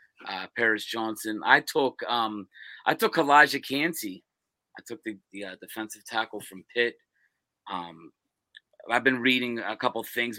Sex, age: male, 30-49